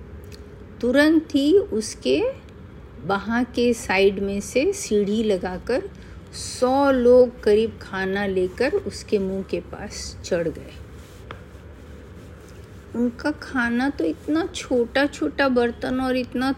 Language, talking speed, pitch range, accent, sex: Hindi, 110 wpm, 165-265 Hz, native, female